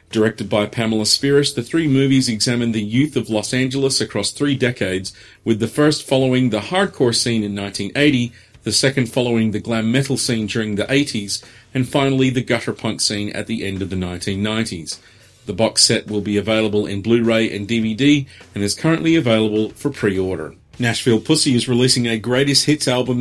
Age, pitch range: 40-59, 105-135 Hz